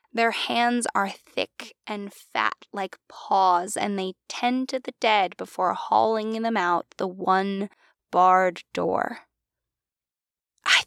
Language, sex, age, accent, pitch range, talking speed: English, female, 10-29, American, 210-300 Hz, 125 wpm